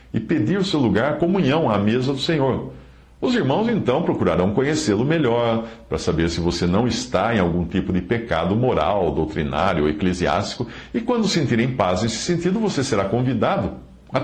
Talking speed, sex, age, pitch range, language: 175 wpm, male, 60-79, 85-125 Hz, Portuguese